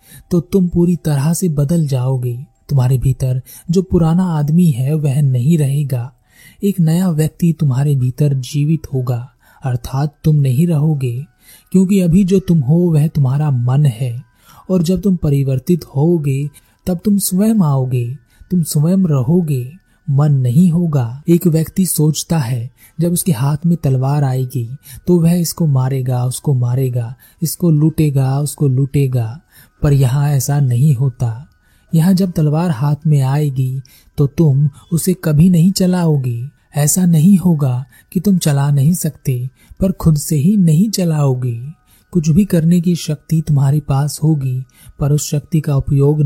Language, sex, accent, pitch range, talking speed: Hindi, male, native, 130-170 Hz, 150 wpm